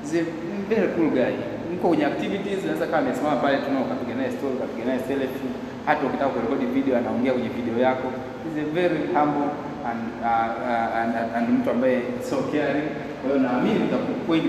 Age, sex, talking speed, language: 30-49, male, 130 wpm, Swahili